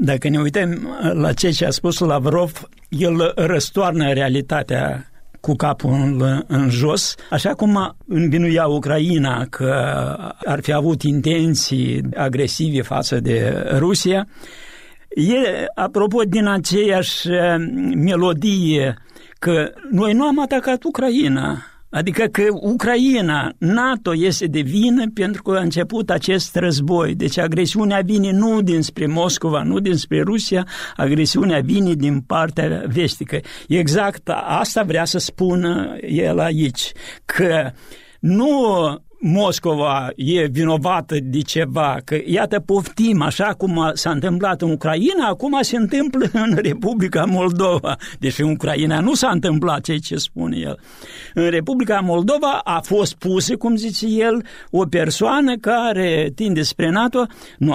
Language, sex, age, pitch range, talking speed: Romanian, male, 60-79, 155-205 Hz, 125 wpm